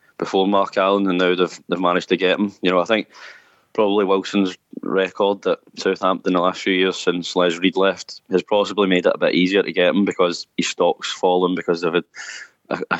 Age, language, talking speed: 20-39, English, 210 wpm